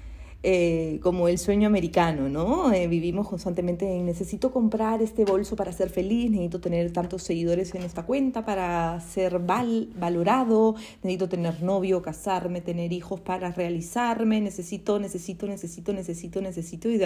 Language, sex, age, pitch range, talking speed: Spanish, female, 30-49, 180-215 Hz, 150 wpm